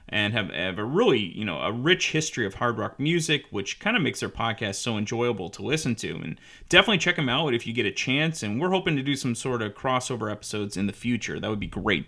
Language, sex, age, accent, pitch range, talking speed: English, male, 30-49, American, 110-145 Hz, 255 wpm